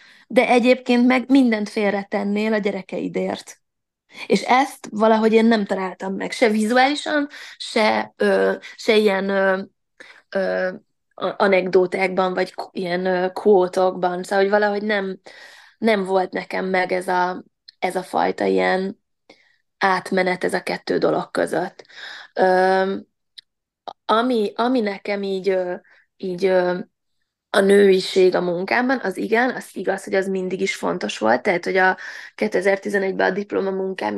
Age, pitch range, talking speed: 20-39, 185-215 Hz, 115 wpm